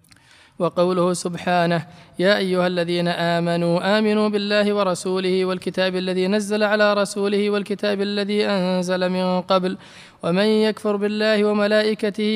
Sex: male